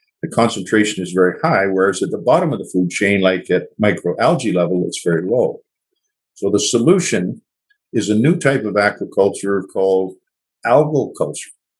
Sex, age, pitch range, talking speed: male, 50-69, 100-140 Hz, 165 wpm